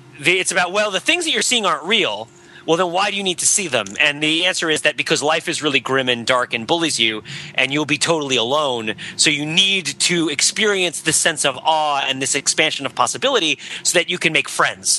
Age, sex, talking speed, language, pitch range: 30-49, male, 235 wpm, English, 135-180 Hz